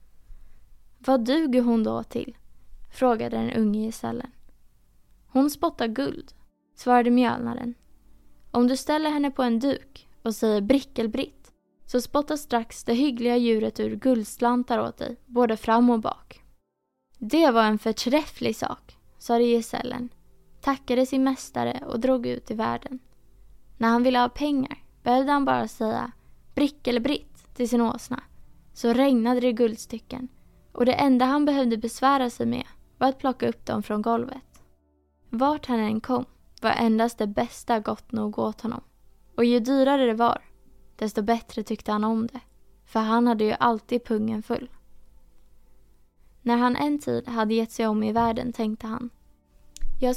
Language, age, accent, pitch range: Swedish, 20-39, Norwegian, 225-260 Hz